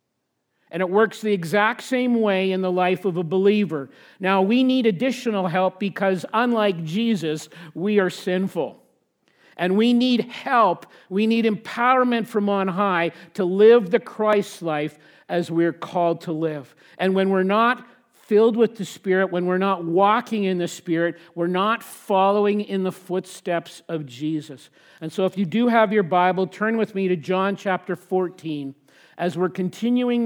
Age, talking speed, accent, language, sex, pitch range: 50-69, 170 wpm, American, English, male, 175-210 Hz